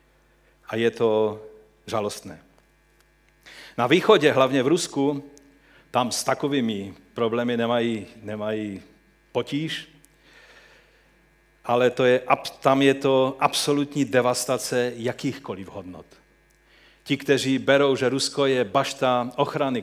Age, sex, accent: 40-59, male, native